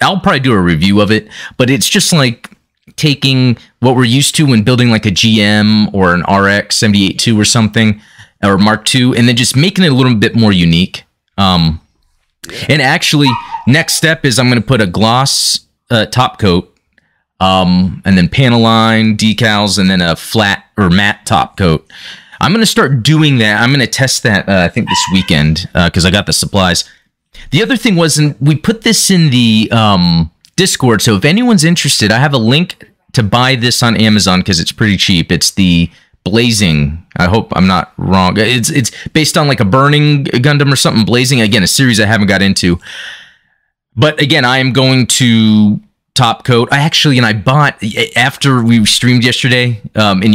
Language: English